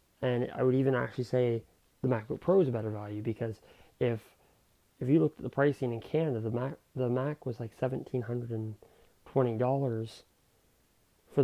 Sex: male